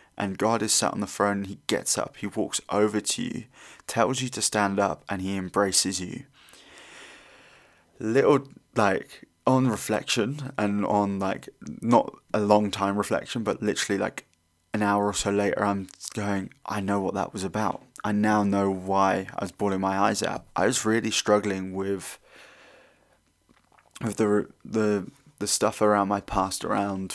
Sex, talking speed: male, 170 wpm